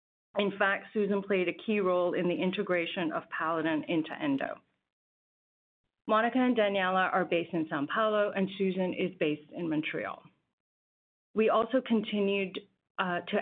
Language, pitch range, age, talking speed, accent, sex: English, 170-195 Hz, 30-49, 150 wpm, American, female